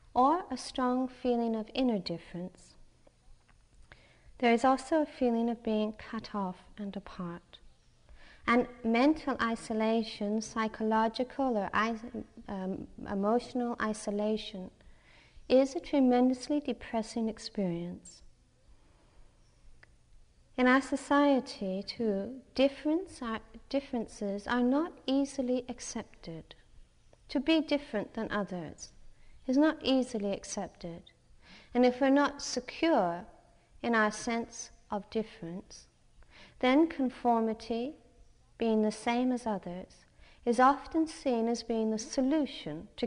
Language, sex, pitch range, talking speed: English, female, 200-255 Hz, 105 wpm